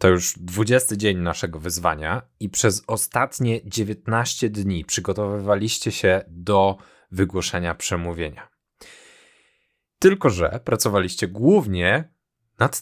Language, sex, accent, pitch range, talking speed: Polish, male, native, 90-130 Hz, 100 wpm